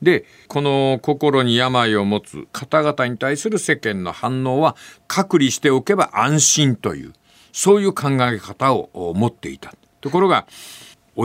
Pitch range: 125-195 Hz